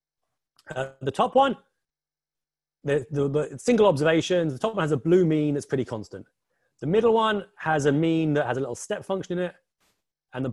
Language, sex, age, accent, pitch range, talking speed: English, male, 30-49, British, 135-195 Hz, 200 wpm